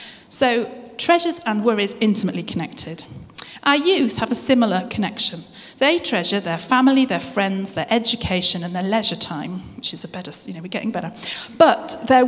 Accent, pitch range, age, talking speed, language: British, 185-260 Hz, 40-59, 170 wpm, English